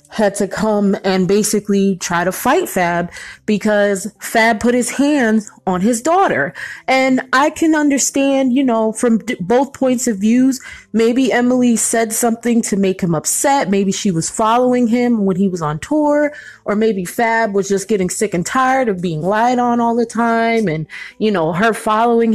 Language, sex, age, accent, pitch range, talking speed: English, female, 20-39, American, 200-255 Hz, 180 wpm